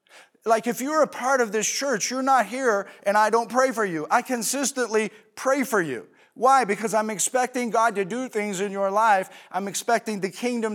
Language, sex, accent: English, male, American